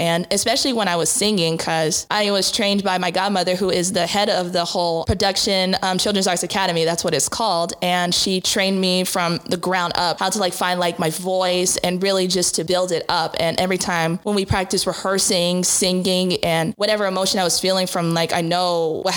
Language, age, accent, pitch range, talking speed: English, 20-39, American, 175-200 Hz, 220 wpm